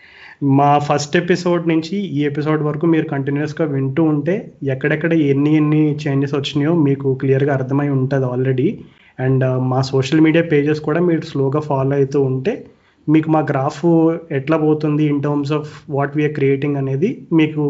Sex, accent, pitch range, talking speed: male, native, 140-160 Hz, 155 wpm